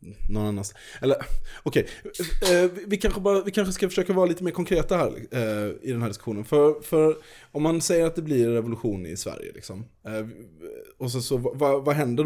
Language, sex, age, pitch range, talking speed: Swedish, male, 20-39, 100-135 Hz, 195 wpm